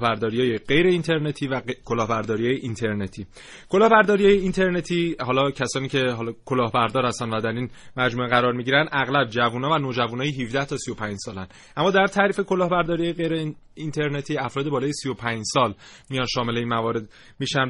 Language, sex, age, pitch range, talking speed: Persian, male, 30-49, 125-145 Hz, 145 wpm